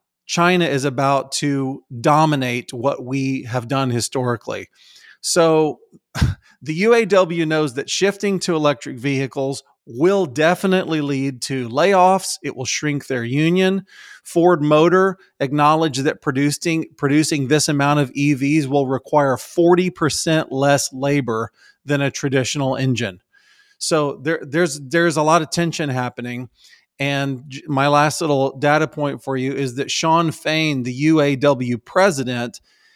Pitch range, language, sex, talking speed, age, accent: 135-170 Hz, English, male, 130 wpm, 40-59, American